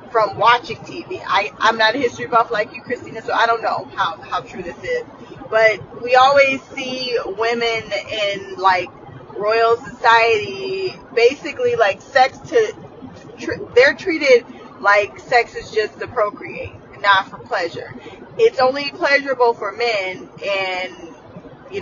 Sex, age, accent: female, 20-39, American